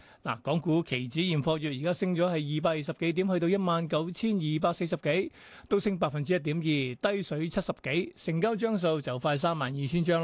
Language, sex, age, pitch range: Chinese, male, 30-49, 150-195 Hz